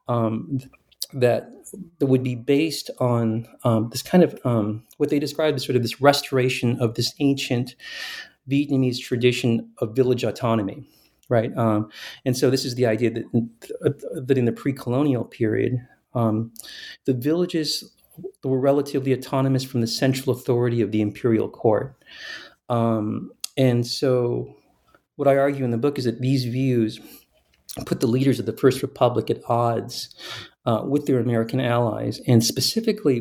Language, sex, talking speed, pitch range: English, male, 155 wpm, 115-135 Hz